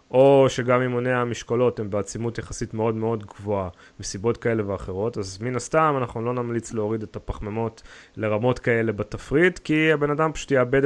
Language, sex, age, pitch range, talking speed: Hebrew, male, 30-49, 110-130 Hz, 165 wpm